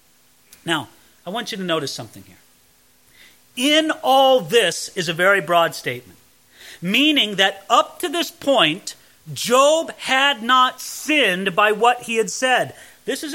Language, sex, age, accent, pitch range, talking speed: English, male, 40-59, American, 150-245 Hz, 150 wpm